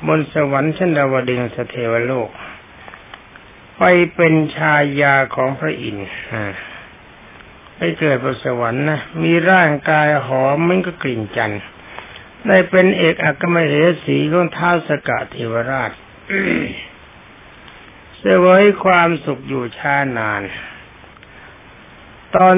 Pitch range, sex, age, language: 130-170 Hz, male, 60-79, Thai